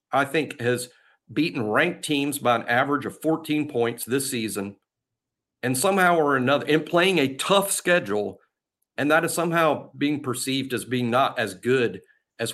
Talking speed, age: 170 wpm, 50-69